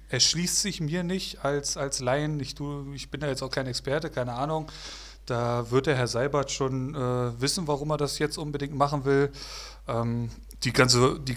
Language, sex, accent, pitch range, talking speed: German, male, German, 125-150 Hz, 200 wpm